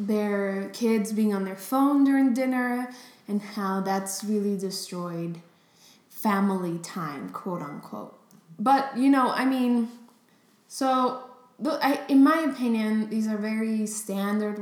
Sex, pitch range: female, 200-240 Hz